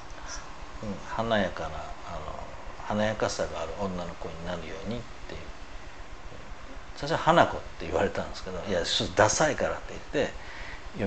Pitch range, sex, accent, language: 85-115 Hz, male, native, Japanese